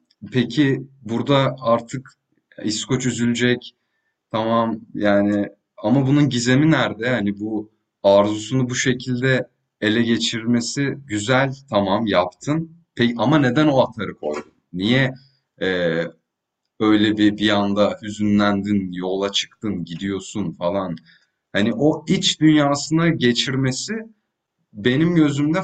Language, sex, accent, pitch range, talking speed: Turkish, male, native, 105-145 Hz, 105 wpm